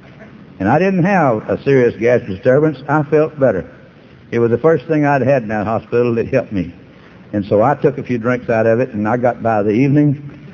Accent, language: American, English